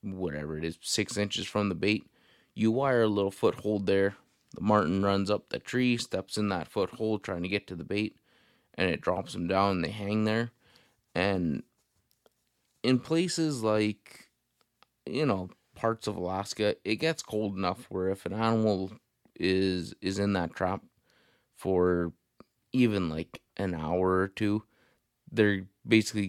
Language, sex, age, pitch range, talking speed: English, male, 20-39, 95-115 Hz, 160 wpm